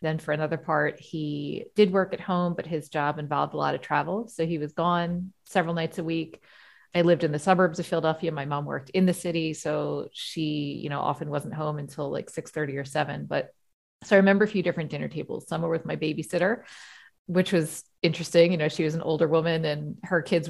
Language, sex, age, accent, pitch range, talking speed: English, female, 40-59, American, 155-180 Hz, 225 wpm